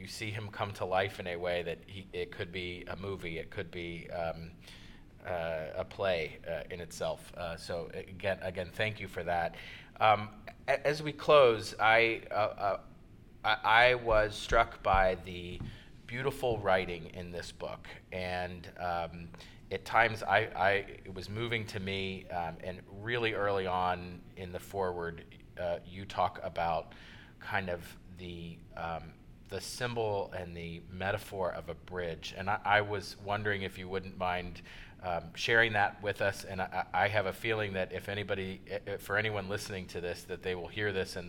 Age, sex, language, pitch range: 30-49, male, English, 85-100 Hz